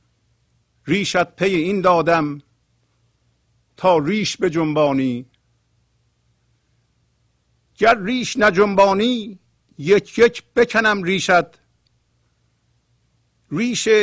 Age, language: 50-69, Persian